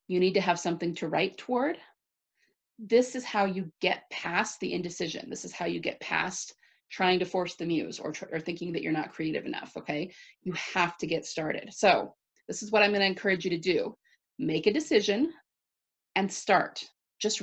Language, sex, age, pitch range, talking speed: English, female, 30-49, 165-220 Hz, 195 wpm